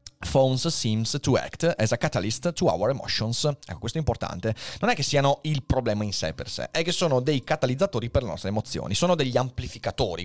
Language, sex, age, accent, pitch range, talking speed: Italian, male, 30-49, native, 105-140 Hz, 210 wpm